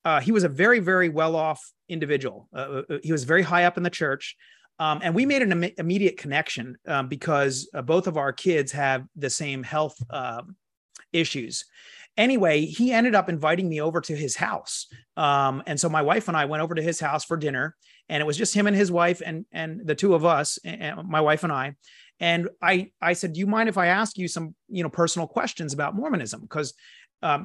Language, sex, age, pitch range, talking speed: English, male, 30-49, 155-205 Hz, 220 wpm